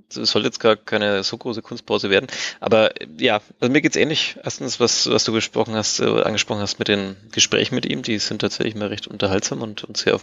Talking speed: 230 wpm